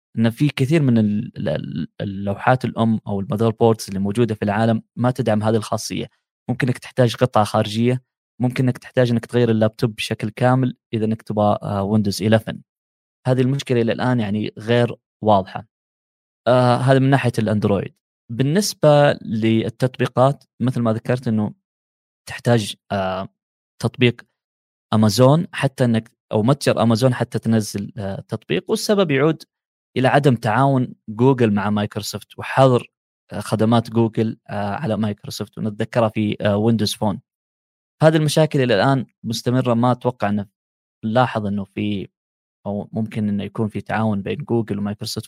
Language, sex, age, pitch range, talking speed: Arabic, male, 20-39, 105-130 Hz, 135 wpm